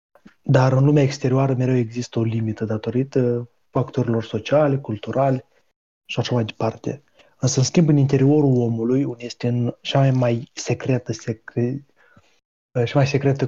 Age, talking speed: 20-39, 140 wpm